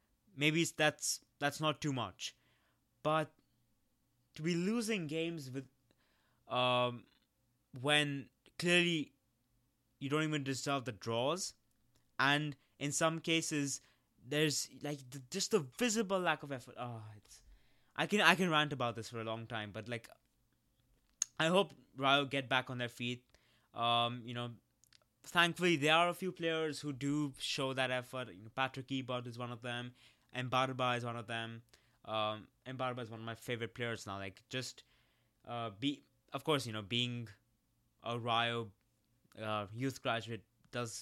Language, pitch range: English, 115-150 Hz